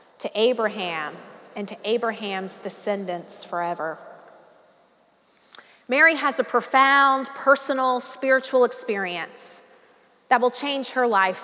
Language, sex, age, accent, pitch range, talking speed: English, female, 30-49, American, 210-265 Hz, 100 wpm